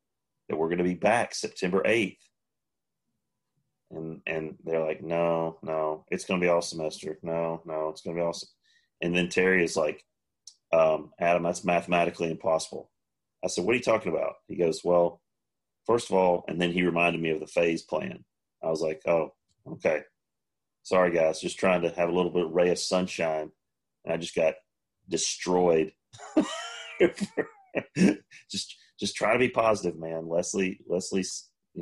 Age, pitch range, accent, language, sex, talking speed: 30-49, 80-95 Hz, American, English, male, 175 wpm